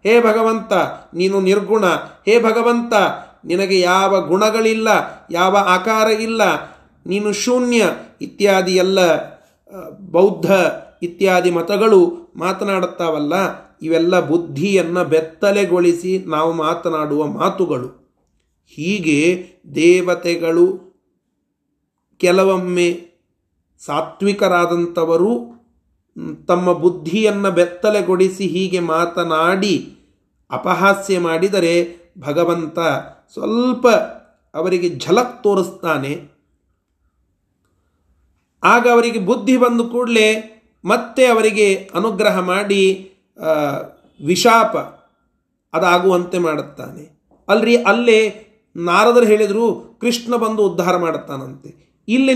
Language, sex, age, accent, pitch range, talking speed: Kannada, male, 30-49, native, 170-215 Hz, 70 wpm